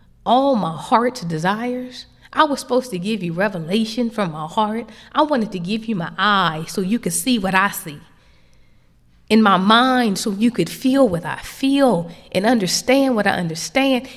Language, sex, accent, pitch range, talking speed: English, female, American, 155-255 Hz, 180 wpm